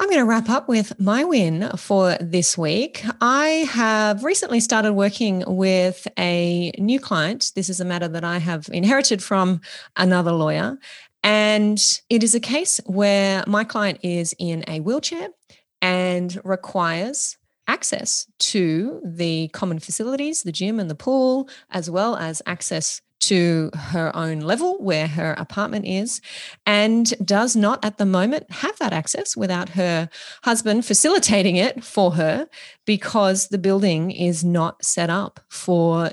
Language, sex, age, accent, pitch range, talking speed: English, female, 30-49, Australian, 170-220 Hz, 150 wpm